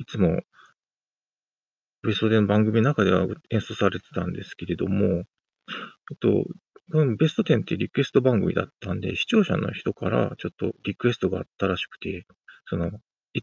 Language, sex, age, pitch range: Japanese, male, 40-59, 100-160 Hz